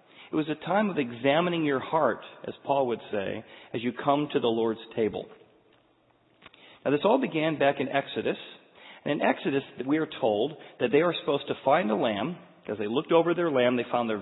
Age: 40-59